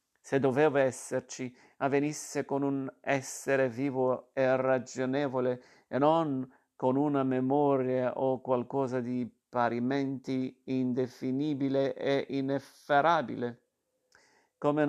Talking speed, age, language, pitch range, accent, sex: 95 wpm, 50-69, Italian, 125-140 Hz, native, male